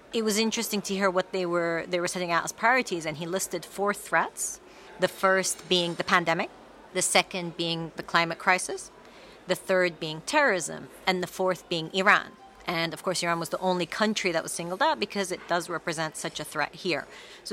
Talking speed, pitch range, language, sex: 205 wpm, 165-195 Hz, English, female